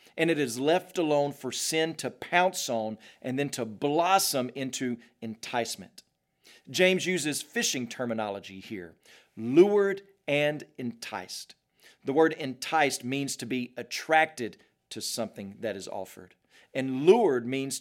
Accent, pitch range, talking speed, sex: American, 115-155 Hz, 130 wpm, male